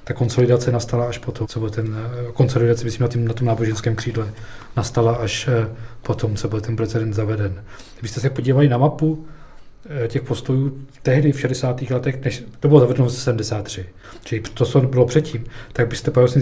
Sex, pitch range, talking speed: male, 115-130 Hz, 170 wpm